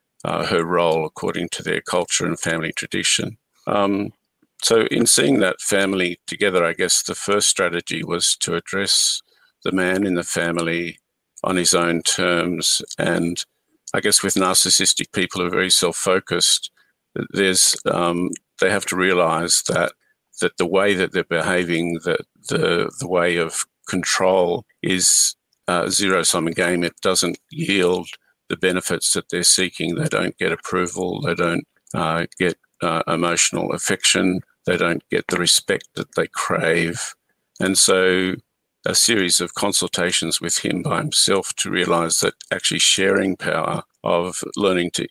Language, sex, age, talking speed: Punjabi, male, 50-69, 155 wpm